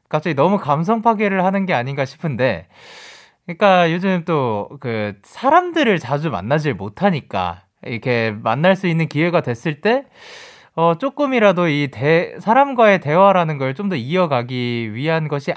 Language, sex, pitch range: Korean, male, 120-200 Hz